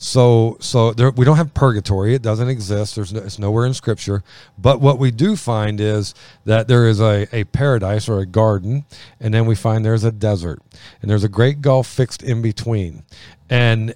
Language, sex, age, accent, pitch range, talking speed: English, male, 40-59, American, 110-130 Hz, 200 wpm